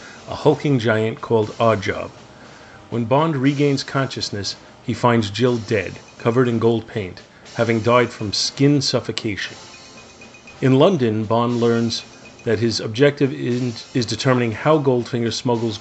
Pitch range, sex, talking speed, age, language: 110-130 Hz, male, 130 wpm, 40-59, English